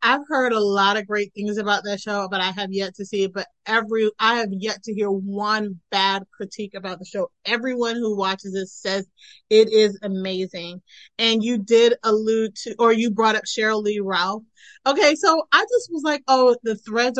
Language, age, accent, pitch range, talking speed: English, 30-49, American, 205-235 Hz, 205 wpm